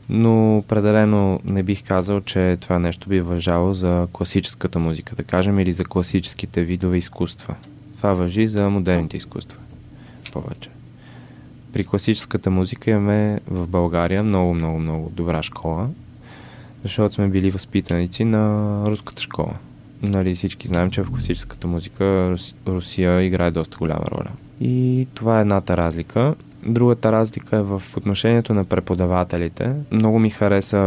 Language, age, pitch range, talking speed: Bulgarian, 20-39, 90-110 Hz, 140 wpm